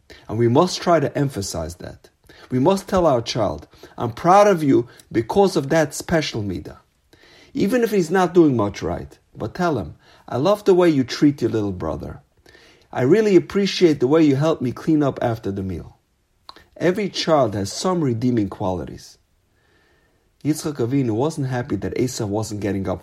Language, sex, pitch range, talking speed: English, male, 110-165 Hz, 175 wpm